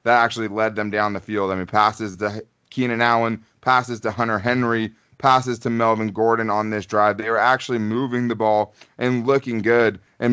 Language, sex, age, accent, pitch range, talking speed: English, male, 20-39, American, 100-120 Hz, 200 wpm